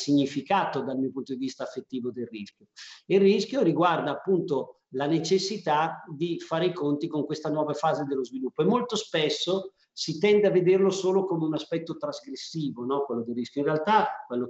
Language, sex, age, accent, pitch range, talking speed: Italian, male, 40-59, native, 135-180 Hz, 180 wpm